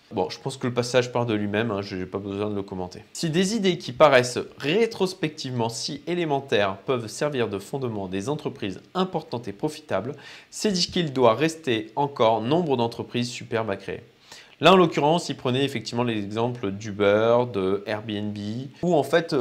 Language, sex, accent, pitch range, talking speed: French, male, French, 110-145 Hz, 180 wpm